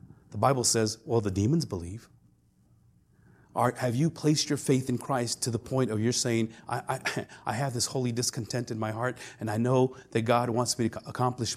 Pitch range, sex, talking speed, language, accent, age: 115-155 Hz, male, 205 wpm, English, American, 40-59